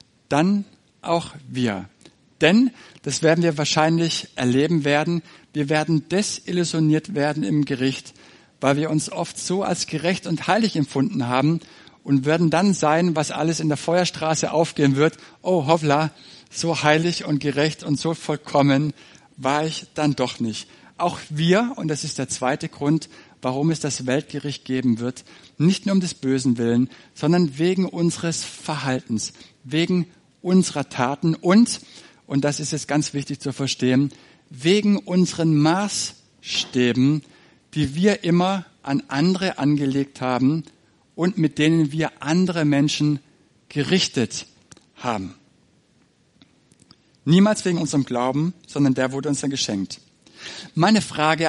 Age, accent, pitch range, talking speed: 60-79, German, 140-170 Hz, 140 wpm